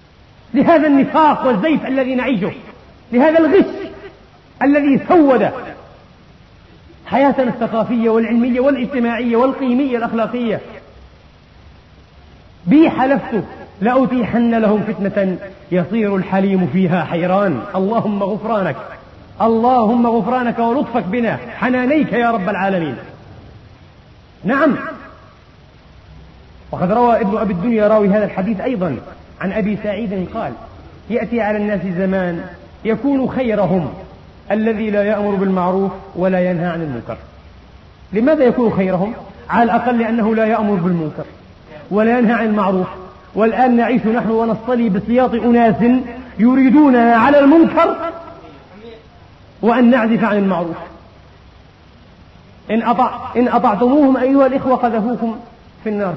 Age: 40-59